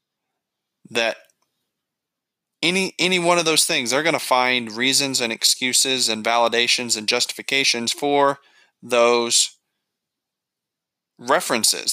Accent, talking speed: American, 105 wpm